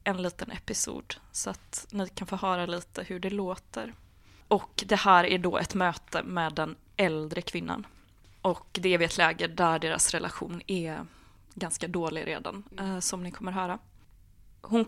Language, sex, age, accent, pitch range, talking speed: Swedish, female, 20-39, native, 175-215 Hz, 170 wpm